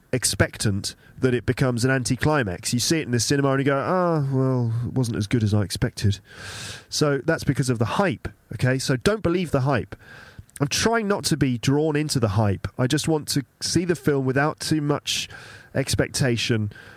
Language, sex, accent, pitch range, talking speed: English, male, British, 110-145 Hz, 200 wpm